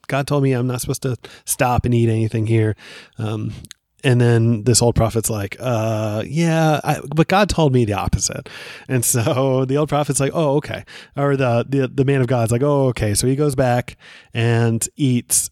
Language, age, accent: English, 20-39, American